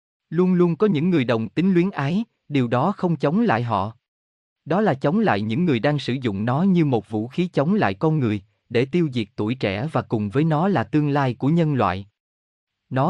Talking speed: 225 wpm